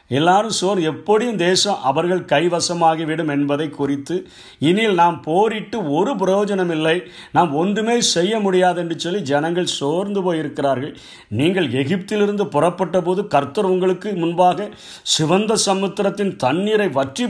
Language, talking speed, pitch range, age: Tamil, 120 wpm, 140-190 Hz, 50-69